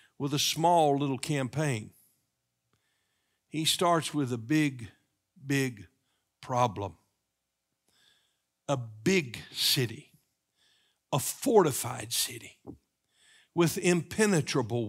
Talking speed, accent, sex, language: 80 wpm, American, male, English